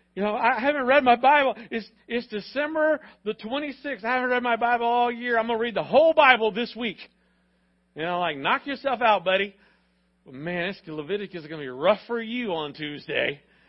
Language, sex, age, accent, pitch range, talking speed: English, male, 50-69, American, 135-215 Hz, 200 wpm